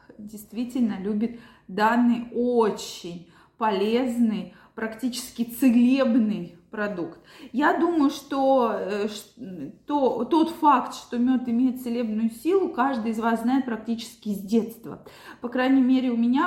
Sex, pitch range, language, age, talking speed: female, 215-255 Hz, Russian, 20-39, 115 wpm